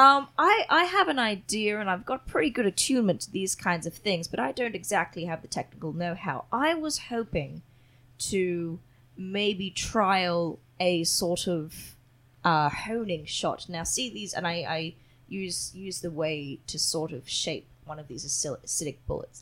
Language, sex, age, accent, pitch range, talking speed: English, female, 20-39, Australian, 160-210 Hz, 175 wpm